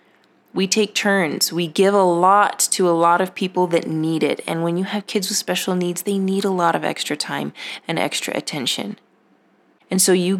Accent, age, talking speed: American, 20-39, 210 wpm